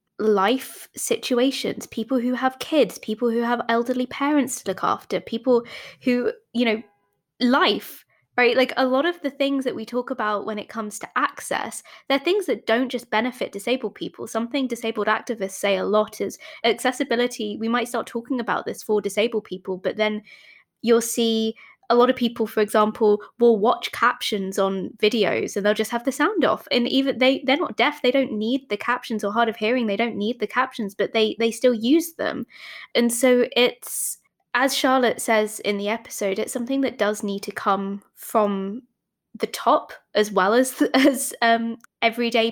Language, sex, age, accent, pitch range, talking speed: English, female, 20-39, British, 210-255 Hz, 190 wpm